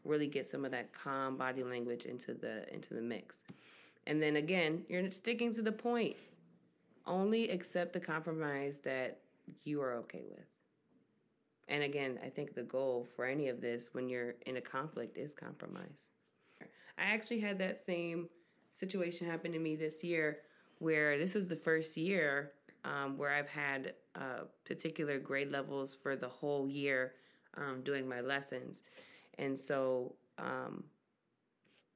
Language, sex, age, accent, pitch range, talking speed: English, female, 20-39, American, 135-170 Hz, 155 wpm